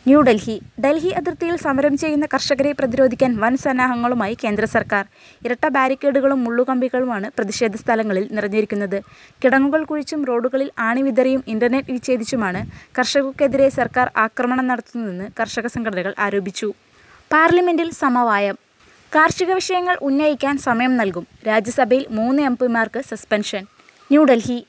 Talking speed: 100 wpm